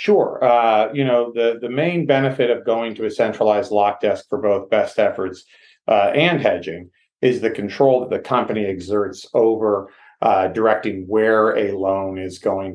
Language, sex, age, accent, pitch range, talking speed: English, male, 40-59, American, 100-120 Hz, 175 wpm